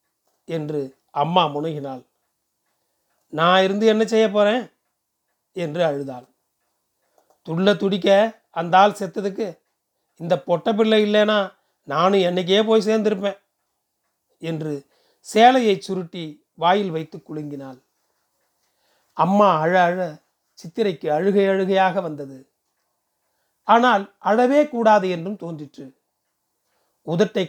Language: Tamil